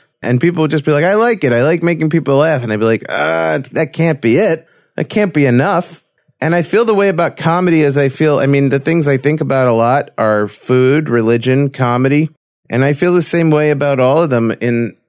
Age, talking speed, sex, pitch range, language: 30-49, 245 wpm, male, 115-145 Hz, English